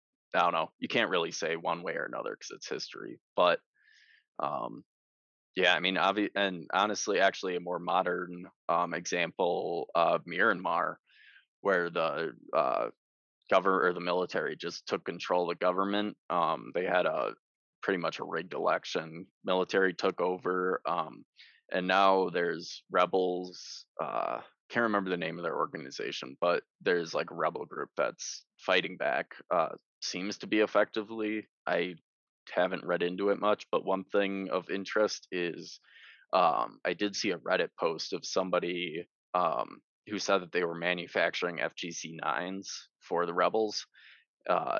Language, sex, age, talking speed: English, male, 20-39, 155 wpm